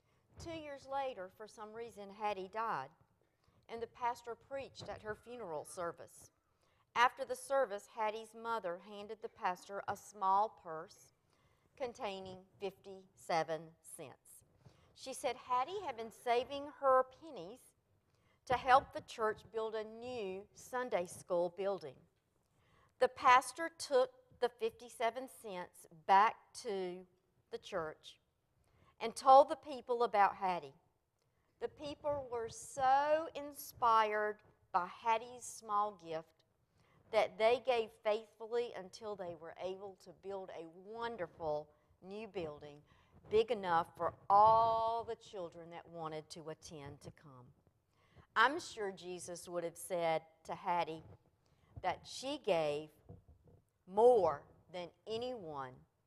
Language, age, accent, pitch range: English, 50-69, American, 165-240 Hz